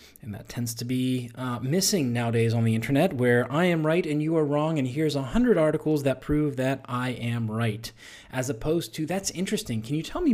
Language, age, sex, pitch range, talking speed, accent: English, 20-39, male, 120-160 Hz, 225 wpm, American